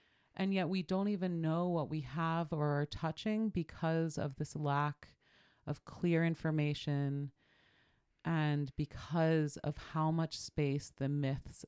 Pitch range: 145-170 Hz